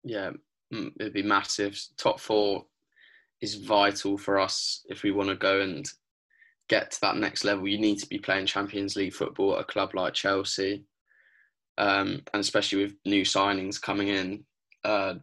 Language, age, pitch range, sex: English, 10-29, 95-100 Hz, male